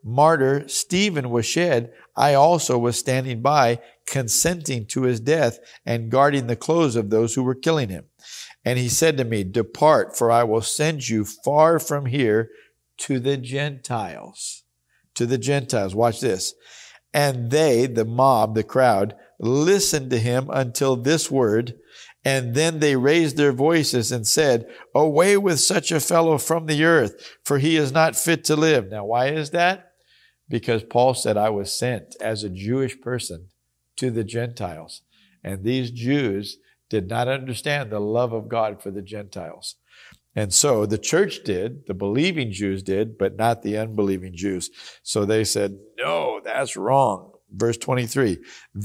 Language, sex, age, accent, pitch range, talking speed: English, male, 50-69, American, 110-145 Hz, 160 wpm